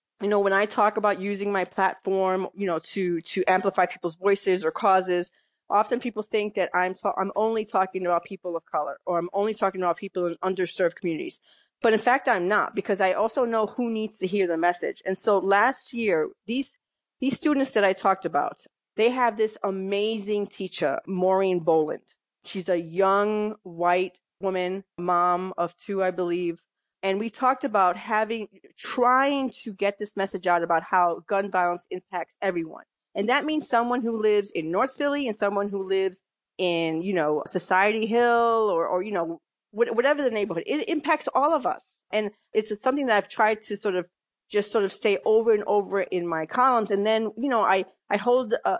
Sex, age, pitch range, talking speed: female, 30-49, 185-225 Hz, 190 wpm